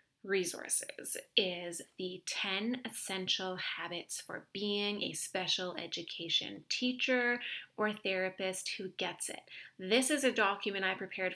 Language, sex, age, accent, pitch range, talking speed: English, female, 30-49, American, 195-250 Hz, 120 wpm